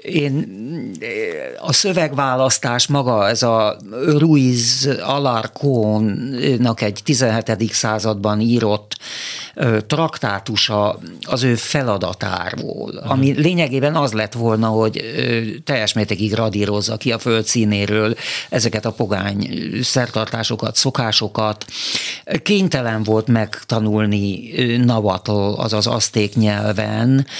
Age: 50-69